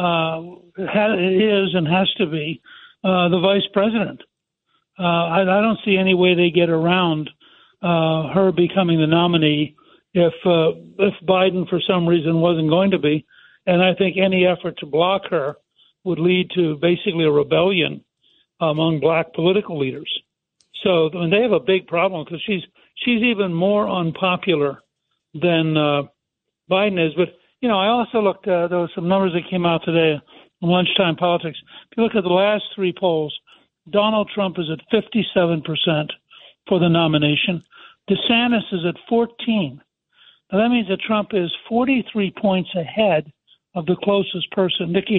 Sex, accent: male, American